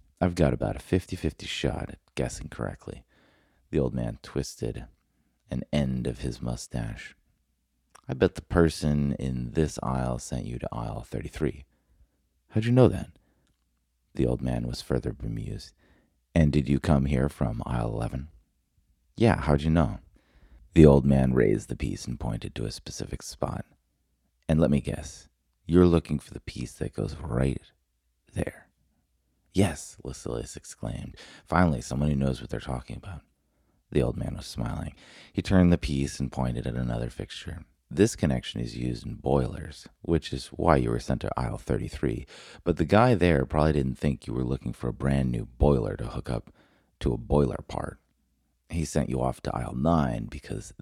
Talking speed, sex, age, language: 175 wpm, male, 30-49, English